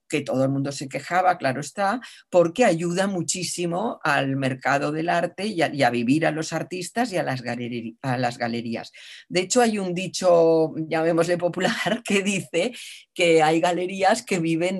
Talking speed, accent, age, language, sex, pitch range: 165 wpm, Spanish, 50-69, Spanish, female, 150-195 Hz